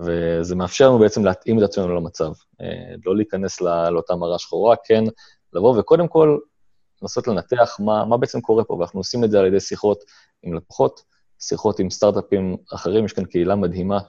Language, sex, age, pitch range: Hebrew, male, 20-39, 90-115 Hz